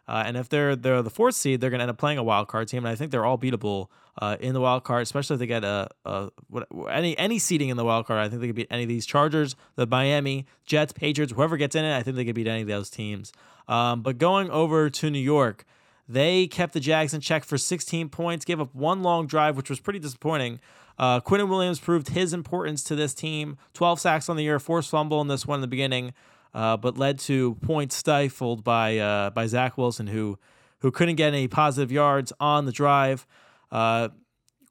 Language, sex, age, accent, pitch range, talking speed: English, male, 20-39, American, 125-160 Hz, 240 wpm